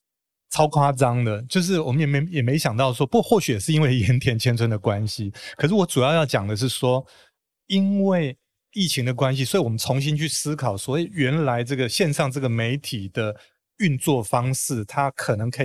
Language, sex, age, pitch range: Chinese, male, 30-49, 120-150 Hz